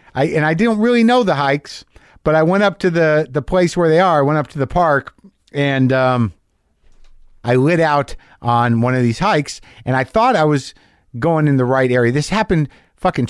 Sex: male